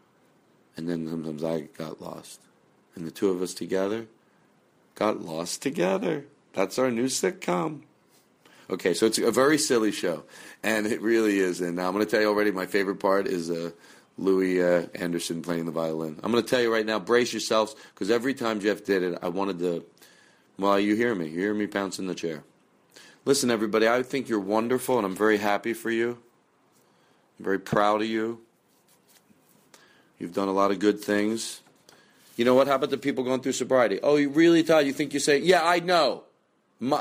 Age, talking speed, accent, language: 40-59, 200 wpm, American, English